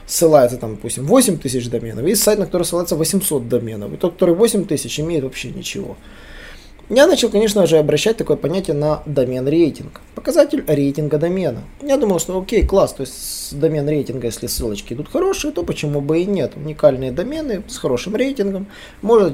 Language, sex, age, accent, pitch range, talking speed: Russian, male, 20-39, native, 130-195 Hz, 175 wpm